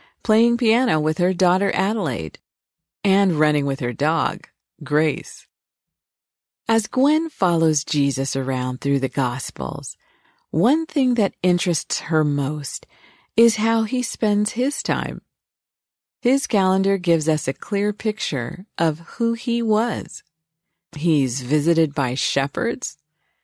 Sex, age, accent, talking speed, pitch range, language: female, 40-59, American, 120 wpm, 150-215 Hz, English